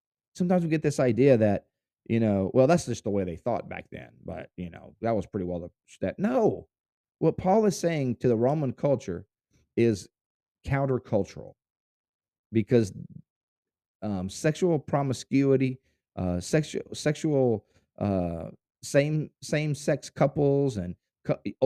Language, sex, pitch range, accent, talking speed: English, male, 105-150 Hz, American, 145 wpm